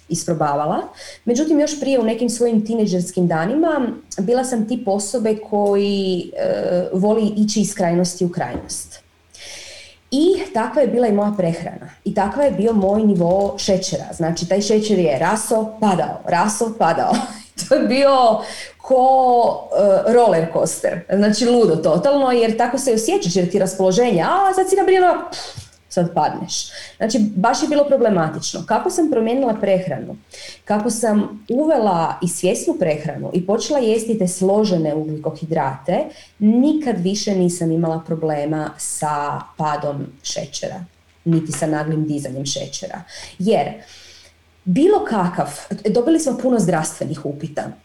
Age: 30-49